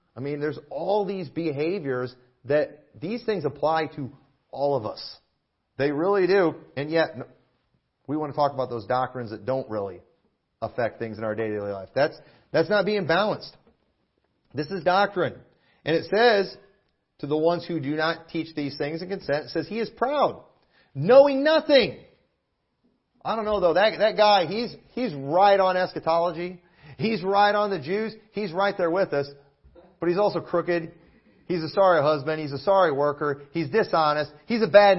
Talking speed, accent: 175 wpm, American